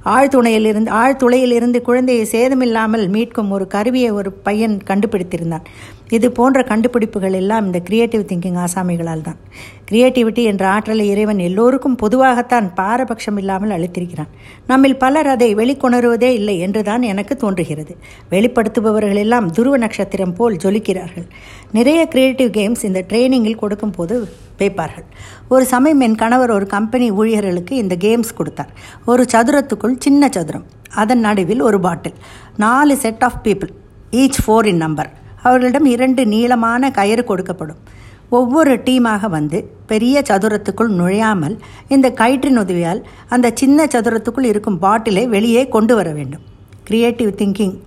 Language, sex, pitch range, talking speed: Tamil, female, 185-245 Hz, 125 wpm